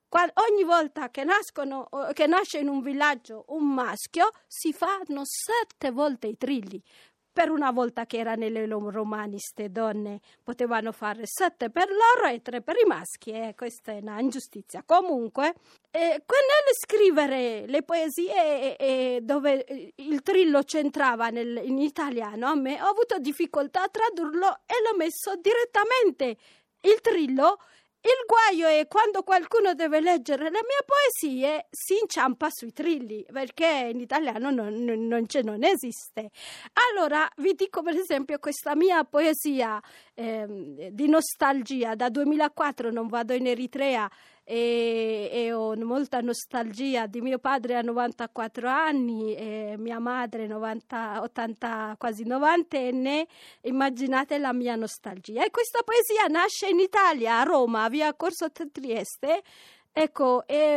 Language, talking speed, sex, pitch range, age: Italian, 140 wpm, female, 240-335 Hz, 40-59